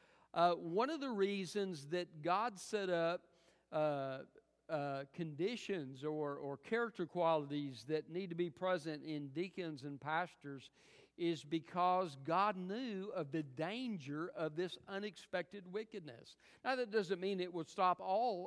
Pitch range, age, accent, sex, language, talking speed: 145-180 Hz, 50-69, American, male, English, 145 wpm